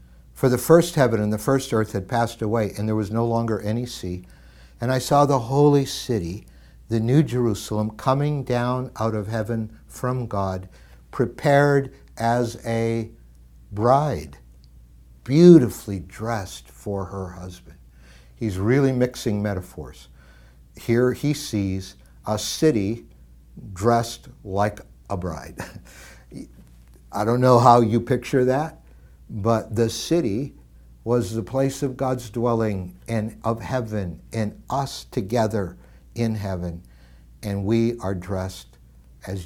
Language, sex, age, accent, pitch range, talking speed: English, male, 60-79, American, 85-115 Hz, 130 wpm